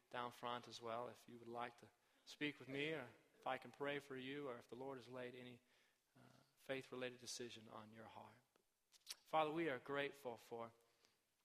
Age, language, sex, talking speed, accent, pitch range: 40-59, English, male, 205 wpm, American, 125-150 Hz